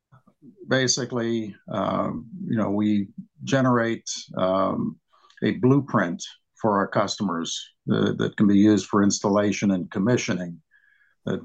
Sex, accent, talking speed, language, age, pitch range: male, American, 115 wpm, English, 50-69, 100-120 Hz